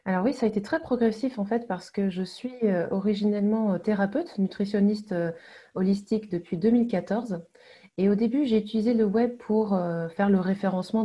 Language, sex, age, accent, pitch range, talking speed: French, female, 20-39, French, 190-235 Hz, 185 wpm